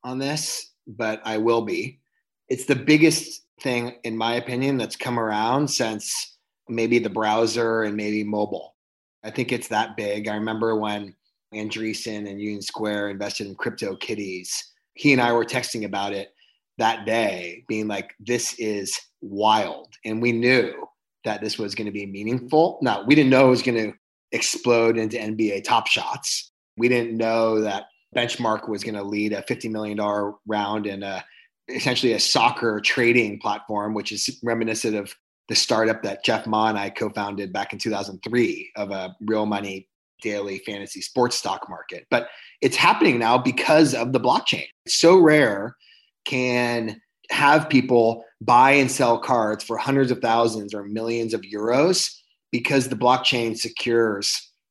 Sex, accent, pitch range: male, American, 105-125 Hz